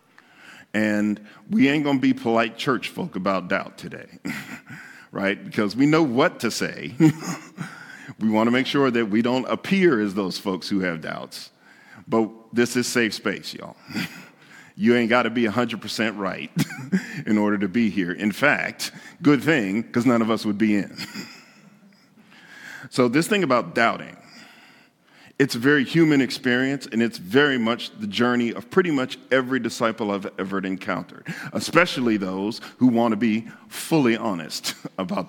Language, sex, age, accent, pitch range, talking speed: English, male, 50-69, American, 110-145 Hz, 165 wpm